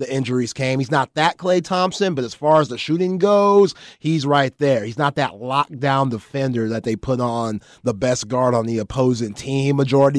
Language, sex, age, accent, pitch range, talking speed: English, male, 30-49, American, 115-140 Hz, 205 wpm